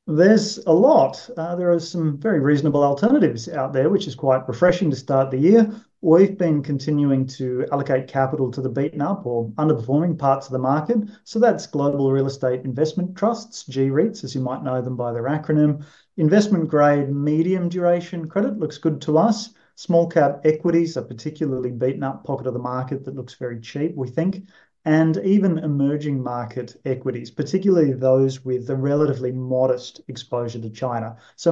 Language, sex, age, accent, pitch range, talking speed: English, male, 30-49, Australian, 130-165 Hz, 175 wpm